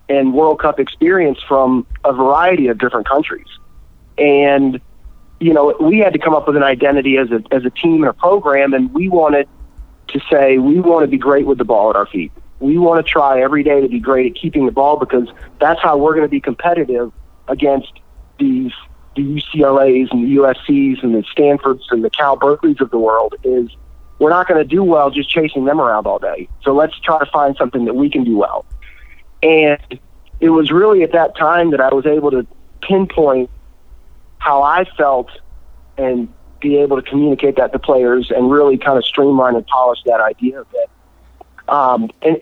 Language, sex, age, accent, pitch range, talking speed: English, male, 30-49, American, 130-160 Hz, 200 wpm